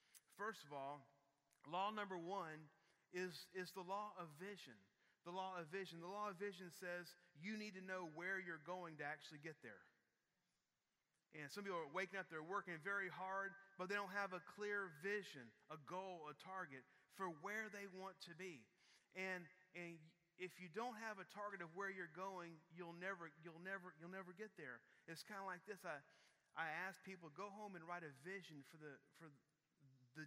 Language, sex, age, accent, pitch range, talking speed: English, male, 30-49, American, 160-195 Hz, 195 wpm